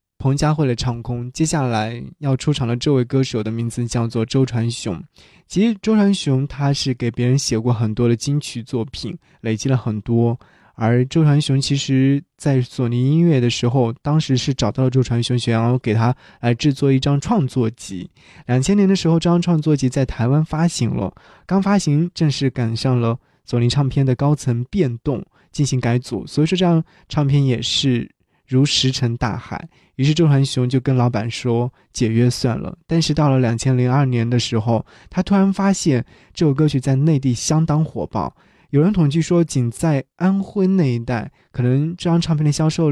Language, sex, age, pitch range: Chinese, male, 20-39, 120-150 Hz